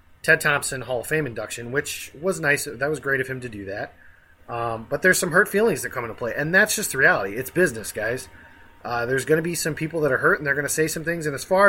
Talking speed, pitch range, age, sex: 280 wpm, 120-170 Hz, 30-49, male